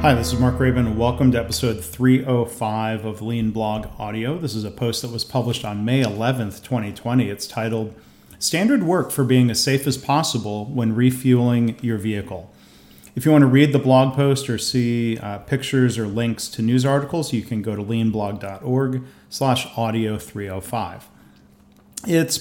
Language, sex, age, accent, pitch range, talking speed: English, male, 40-59, American, 110-130 Hz, 170 wpm